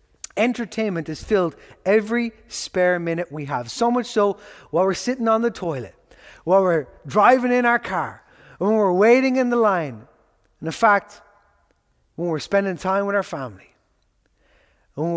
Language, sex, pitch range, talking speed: English, male, 150-200 Hz, 160 wpm